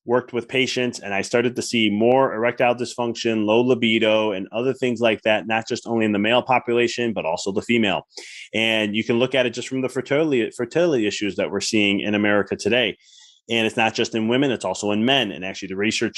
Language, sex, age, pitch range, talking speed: English, male, 30-49, 105-125 Hz, 225 wpm